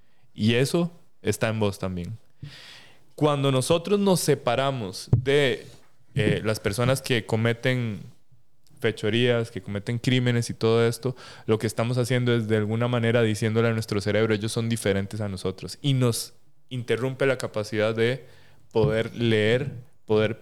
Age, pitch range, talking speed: 20-39, 115-135 Hz, 145 wpm